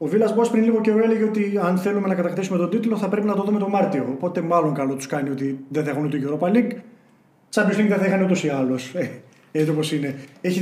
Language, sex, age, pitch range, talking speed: Greek, male, 30-49, 160-215 Hz, 250 wpm